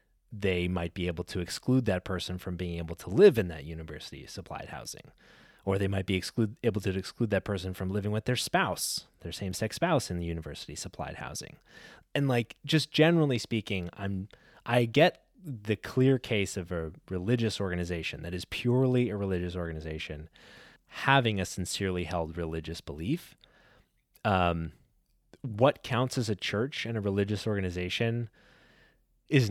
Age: 20-39